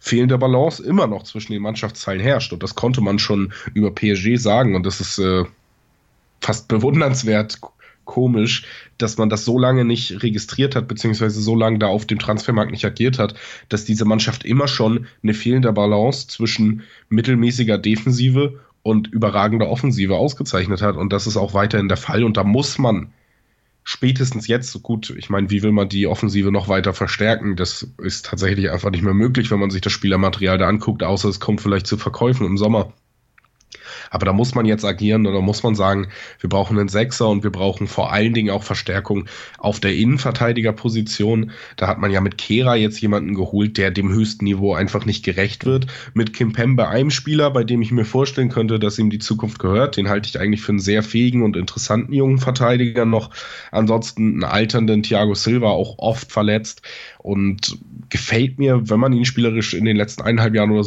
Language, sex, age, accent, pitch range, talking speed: German, male, 20-39, German, 100-120 Hz, 195 wpm